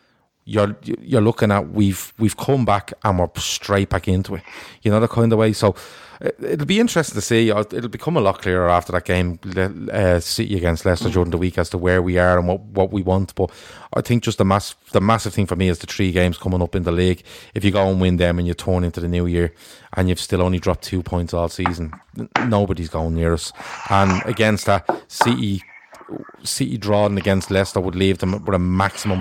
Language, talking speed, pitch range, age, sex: English, 230 wpm, 90-105 Hz, 30-49, male